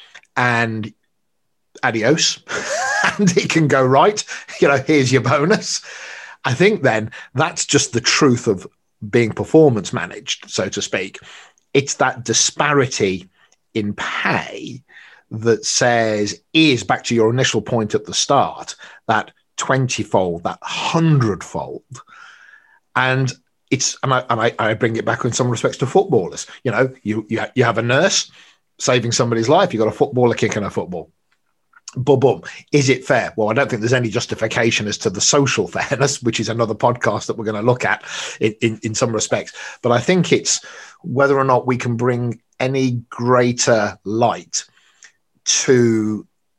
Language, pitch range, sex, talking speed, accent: English, 115-140 Hz, male, 160 wpm, British